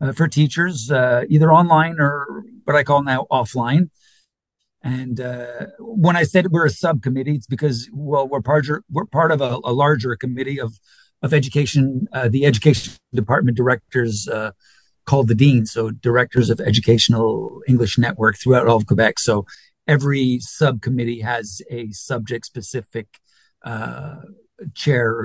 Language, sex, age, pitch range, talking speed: English, male, 50-69, 120-150 Hz, 150 wpm